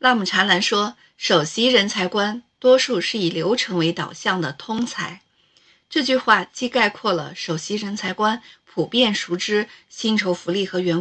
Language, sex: Chinese, female